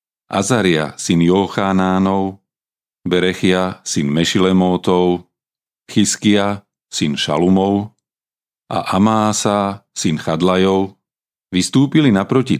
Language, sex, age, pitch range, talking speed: Slovak, male, 40-59, 85-100 Hz, 70 wpm